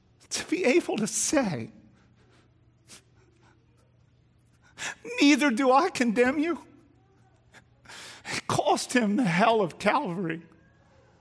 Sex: male